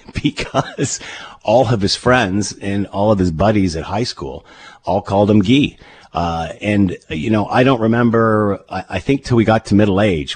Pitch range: 85-110 Hz